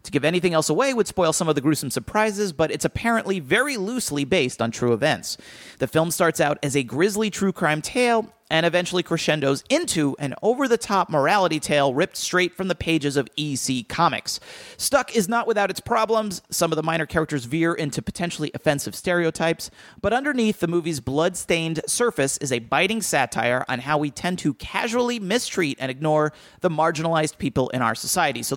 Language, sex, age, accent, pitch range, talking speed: English, male, 30-49, American, 145-195 Hz, 185 wpm